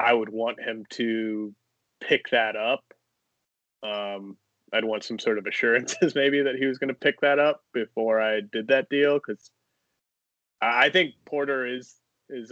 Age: 20-39